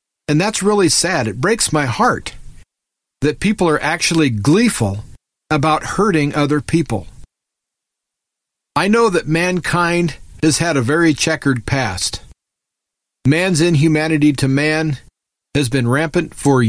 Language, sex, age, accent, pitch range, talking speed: English, male, 40-59, American, 125-170 Hz, 125 wpm